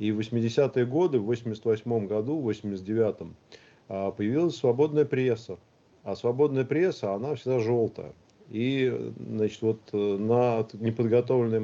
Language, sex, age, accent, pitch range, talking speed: Russian, male, 40-59, native, 105-125 Hz, 120 wpm